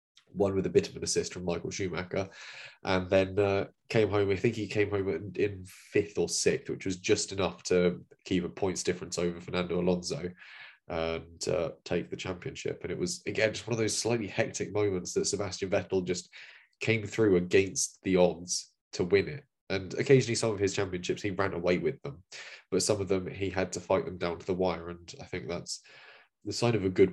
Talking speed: 215 wpm